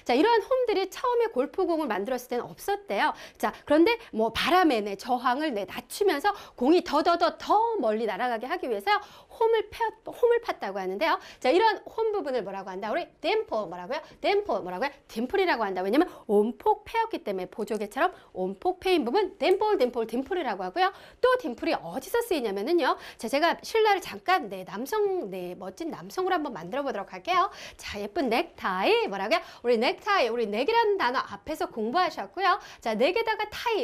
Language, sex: Korean, female